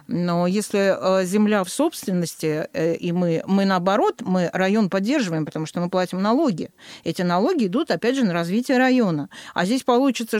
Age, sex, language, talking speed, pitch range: 40-59, female, Russian, 160 wpm, 180-245 Hz